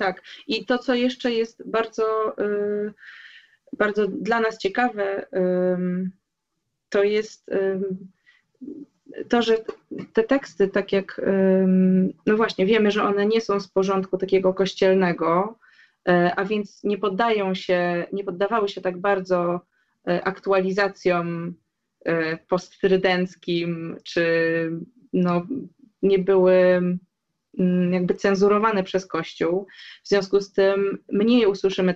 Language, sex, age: Polish, female, 20-39